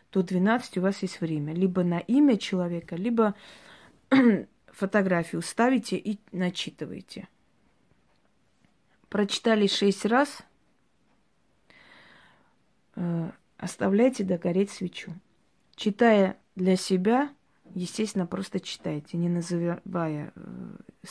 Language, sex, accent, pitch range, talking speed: Russian, female, native, 170-205 Hz, 90 wpm